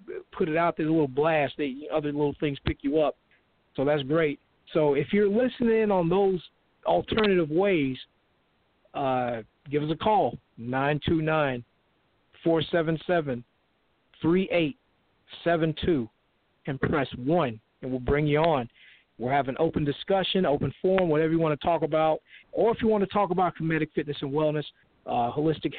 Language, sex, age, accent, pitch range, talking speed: English, male, 50-69, American, 130-165 Hz, 150 wpm